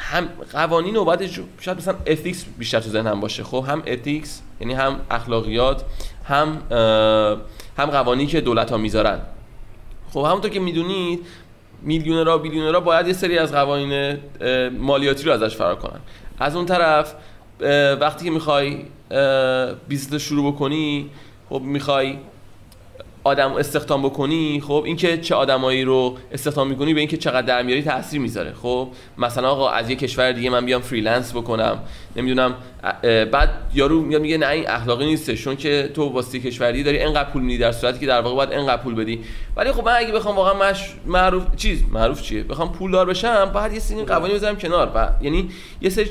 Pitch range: 125-160 Hz